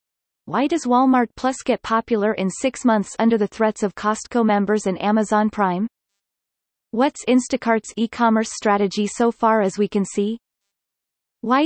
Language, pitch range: English, 195-240 Hz